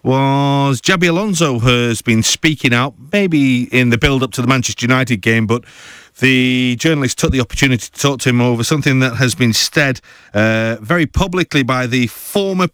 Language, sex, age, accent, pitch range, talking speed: English, male, 40-59, British, 120-160 Hz, 185 wpm